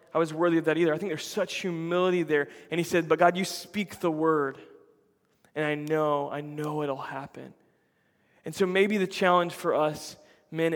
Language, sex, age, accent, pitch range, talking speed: English, male, 20-39, American, 150-180 Hz, 200 wpm